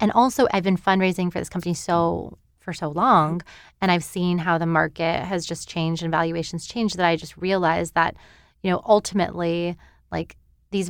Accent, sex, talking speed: American, female, 185 wpm